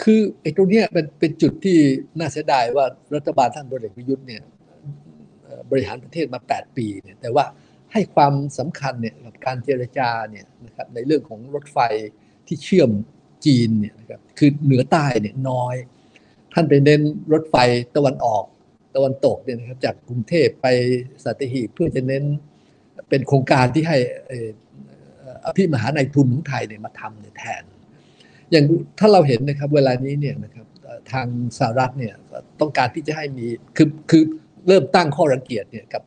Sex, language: male, Thai